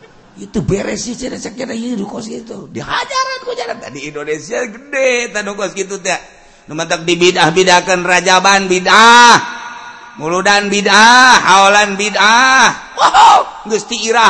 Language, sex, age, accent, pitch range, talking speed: Indonesian, male, 50-69, native, 145-210 Hz, 95 wpm